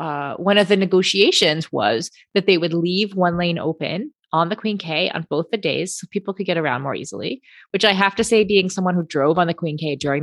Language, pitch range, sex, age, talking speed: English, 155-205 Hz, female, 30-49, 245 wpm